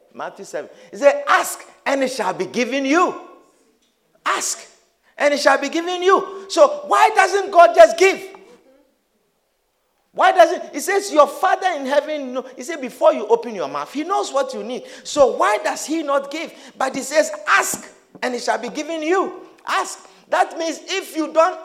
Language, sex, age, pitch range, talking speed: English, male, 50-69, 265-360 Hz, 185 wpm